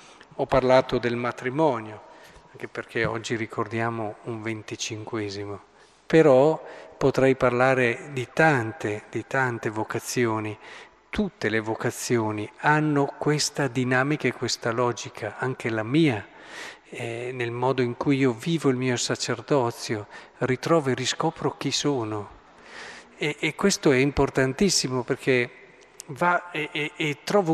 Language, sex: Italian, male